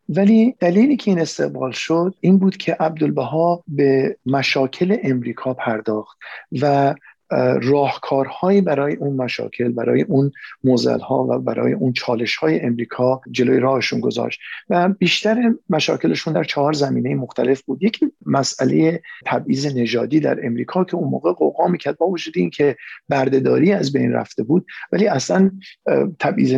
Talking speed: 140 wpm